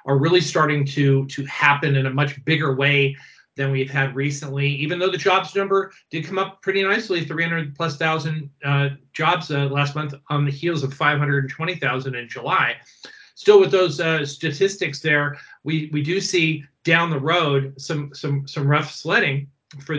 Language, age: English, 40-59